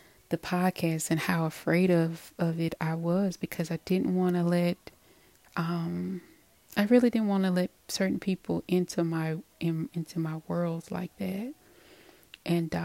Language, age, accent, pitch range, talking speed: English, 30-49, American, 165-180 Hz, 160 wpm